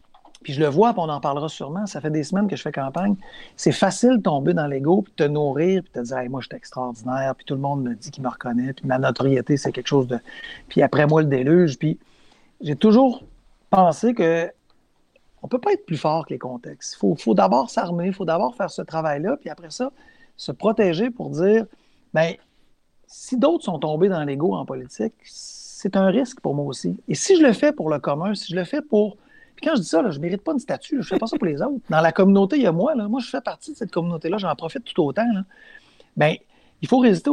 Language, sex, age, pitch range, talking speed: French, male, 60-79, 150-210 Hz, 255 wpm